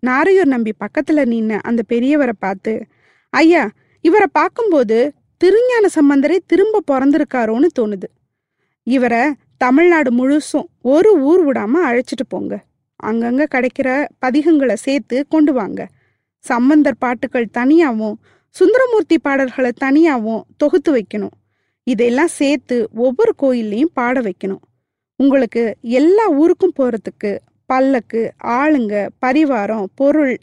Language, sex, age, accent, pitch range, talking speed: Tamil, female, 20-39, native, 230-310 Hz, 90 wpm